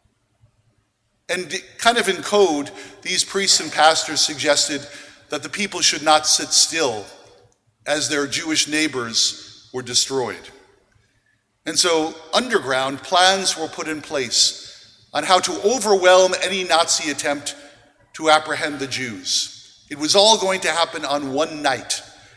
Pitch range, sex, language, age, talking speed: 135-185 Hz, male, English, 50-69, 135 wpm